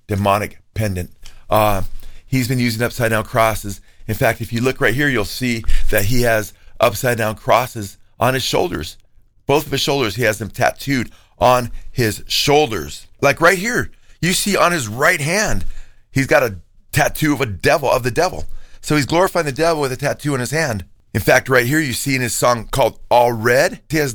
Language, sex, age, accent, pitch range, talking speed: English, male, 40-59, American, 110-145 Hz, 205 wpm